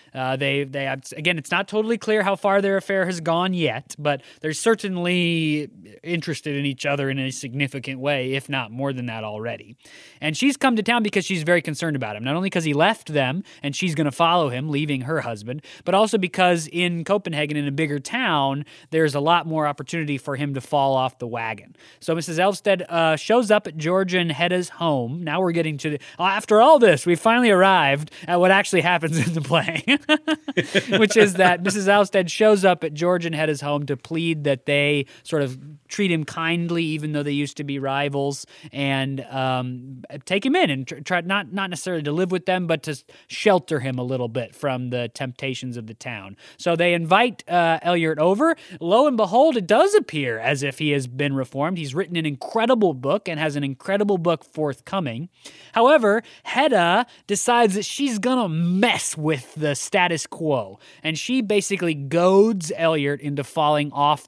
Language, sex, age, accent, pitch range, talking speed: English, male, 20-39, American, 140-190 Hz, 200 wpm